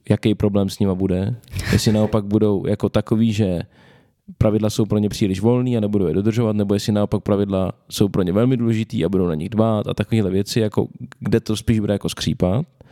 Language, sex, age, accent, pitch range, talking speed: Czech, male, 20-39, native, 105-125 Hz, 210 wpm